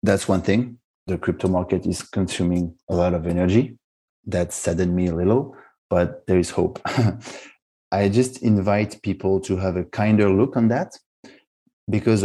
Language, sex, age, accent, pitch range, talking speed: English, male, 30-49, French, 90-105 Hz, 160 wpm